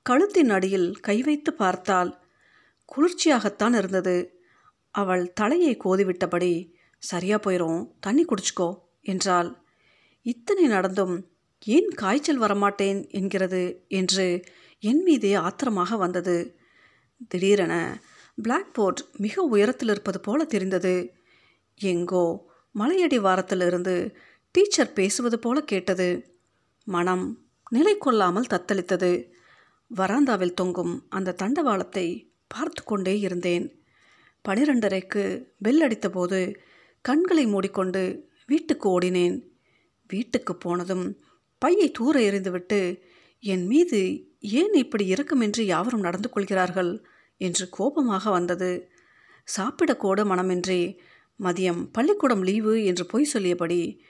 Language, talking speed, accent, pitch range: Tamil, 90 wpm, native, 180-245 Hz